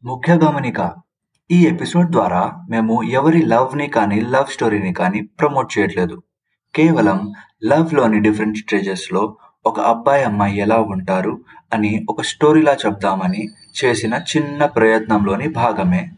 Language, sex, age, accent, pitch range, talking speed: Telugu, male, 20-39, native, 105-145 Hz, 115 wpm